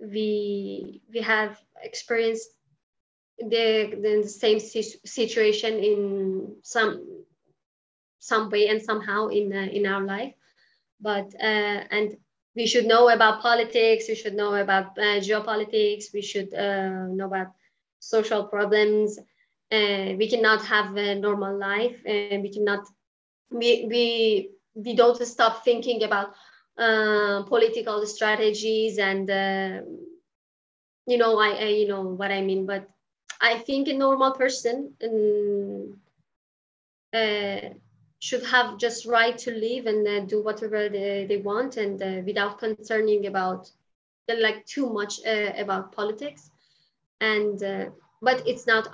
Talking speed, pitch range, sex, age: 130 wpm, 200-230 Hz, female, 20-39